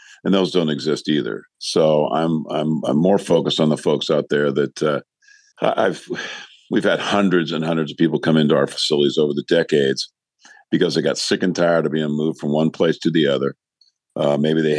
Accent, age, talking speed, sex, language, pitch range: American, 50-69, 205 wpm, male, English, 75-85 Hz